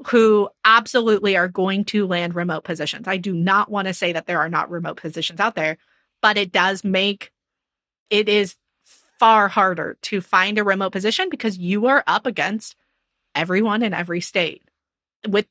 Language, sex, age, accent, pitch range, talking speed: English, female, 30-49, American, 185-235 Hz, 175 wpm